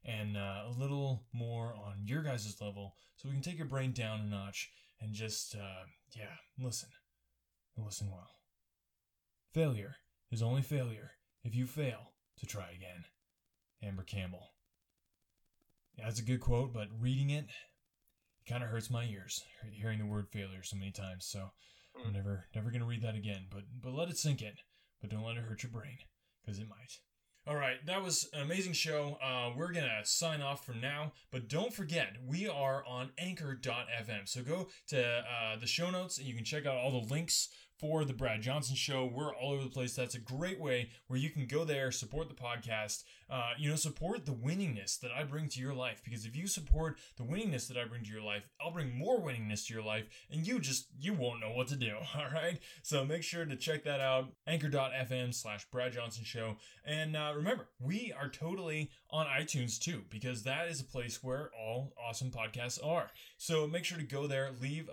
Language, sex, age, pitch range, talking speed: English, male, 20-39, 110-150 Hz, 200 wpm